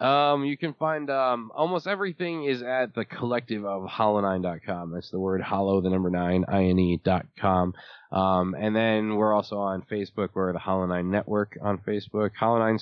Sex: male